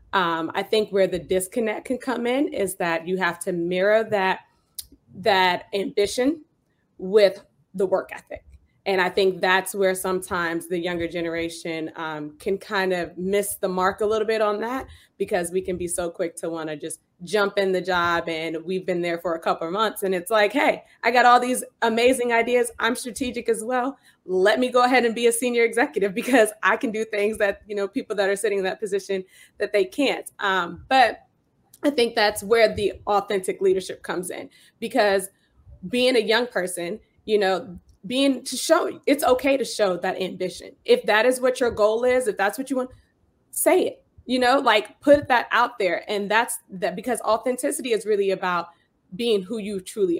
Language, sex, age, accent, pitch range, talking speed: English, female, 20-39, American, 185-235 Hz, 200 wpm